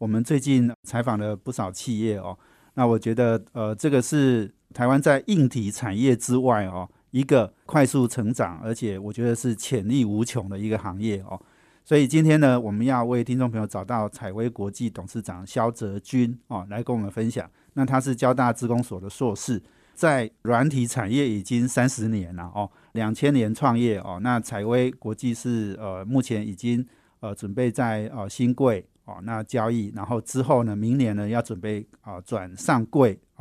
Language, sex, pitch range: Chinese, male, 105-130 Hz